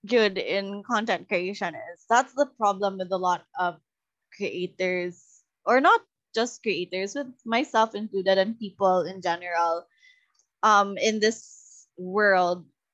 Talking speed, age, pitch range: 130 wpm, 20-39, 185-230 Hz